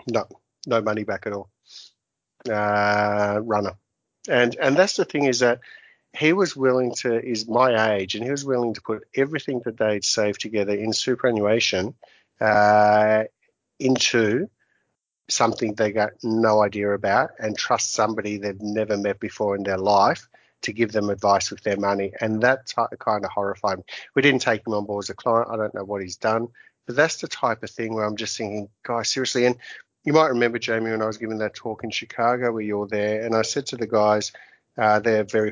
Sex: male